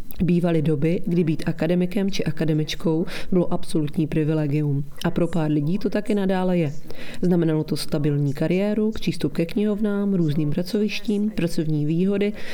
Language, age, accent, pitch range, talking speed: Czech, 30-49, native, 160-195 Hz, 140 wpm